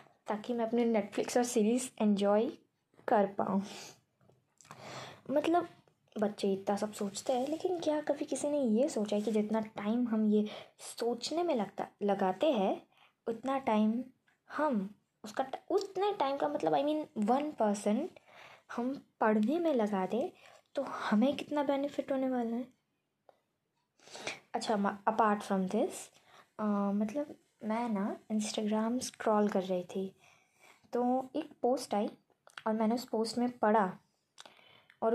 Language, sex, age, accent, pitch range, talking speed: Hindi, female, 20-39, native, 215-275 Hz, 140 wpm